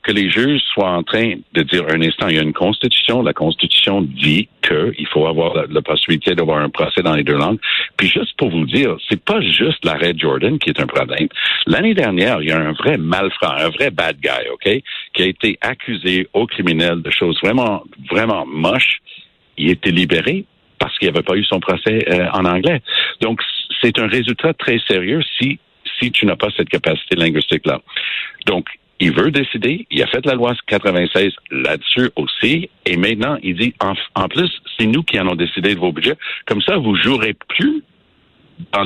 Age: 60-79